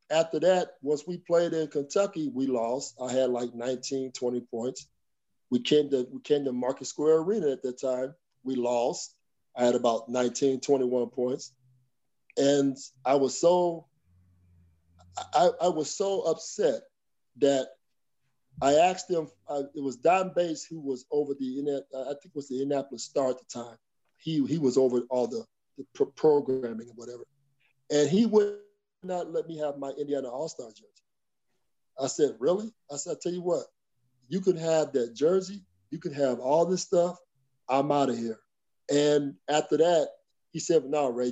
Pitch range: 130-165 Hz